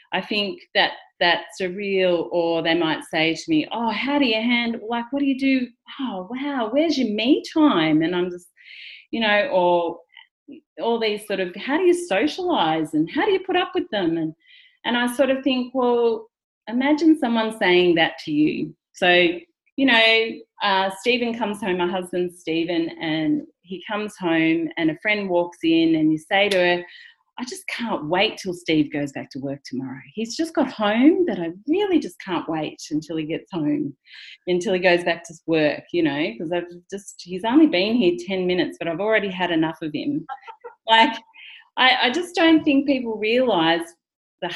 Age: 40-59